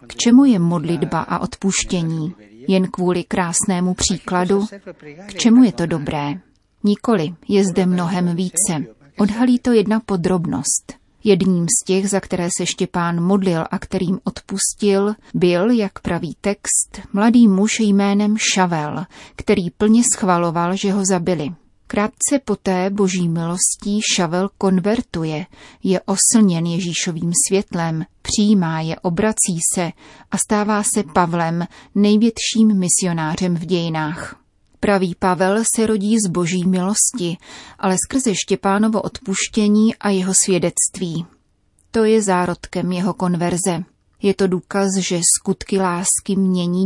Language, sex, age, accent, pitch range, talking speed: Czech, female, 30-49, native, 175-205 Hz, 125 wpm